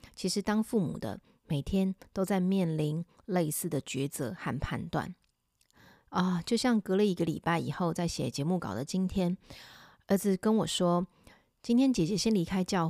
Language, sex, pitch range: Chinese, female, 160-200 Hz